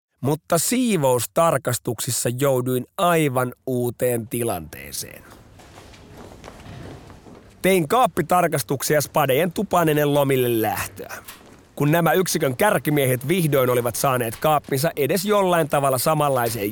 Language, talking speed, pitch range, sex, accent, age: Finnish, 85 wpm, 120-170 Hz, male, native, 30-49